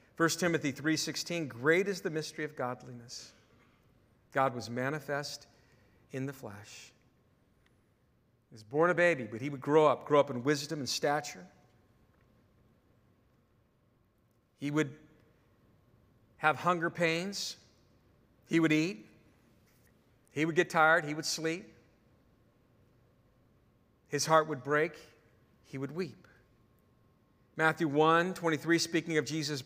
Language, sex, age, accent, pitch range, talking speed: English, male, 50-69, American, 120-160 Hz, 120 wpm